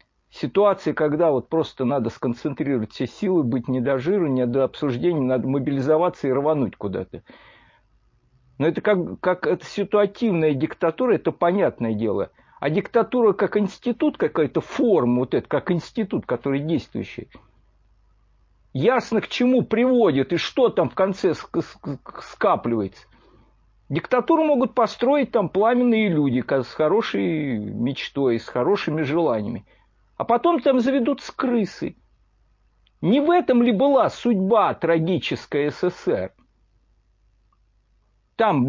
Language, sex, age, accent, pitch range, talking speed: Russian, male, 50-69, native, 140-225 Hz, 125 wpm